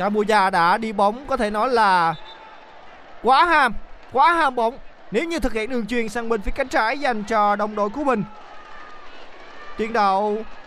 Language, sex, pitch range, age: Vietnamese, male, 175-230 Hz, 20-39